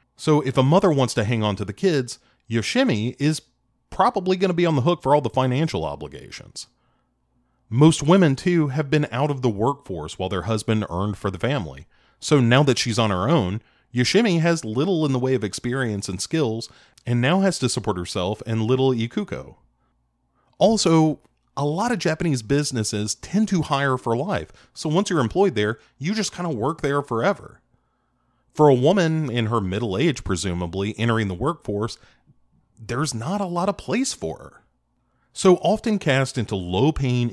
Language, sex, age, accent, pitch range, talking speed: English, male, 30-49, American, 105-155 Hz, 185 wpm